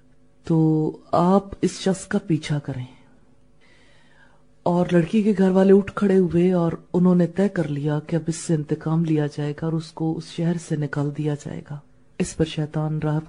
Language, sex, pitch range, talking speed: English, female, 145-170 Hz, 165 wpm